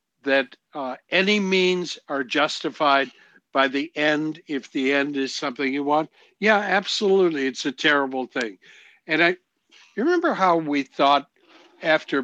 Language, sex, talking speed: English, male, 145 wpm